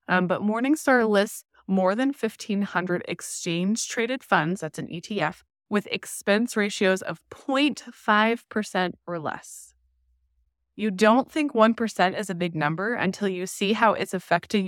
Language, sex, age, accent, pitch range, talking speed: English, female, 20-39, American, 165-215 Hz, 140 wpm